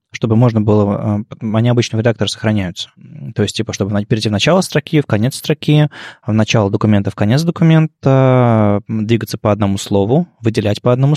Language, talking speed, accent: Russian, 170 wpm, native